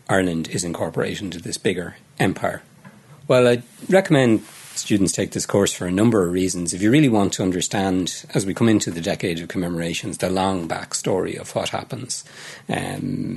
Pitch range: 90-110 Hz